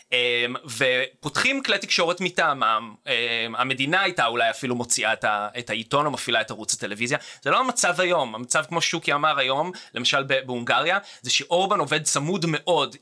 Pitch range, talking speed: 135-205 Hz, 145 wpm